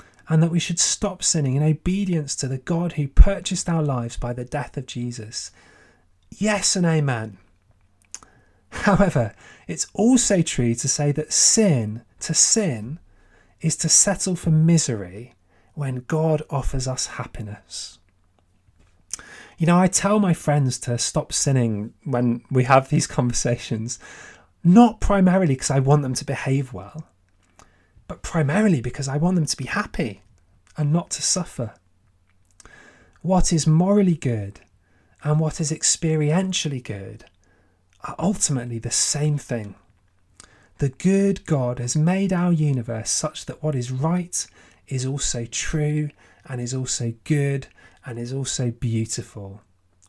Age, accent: 30-49, British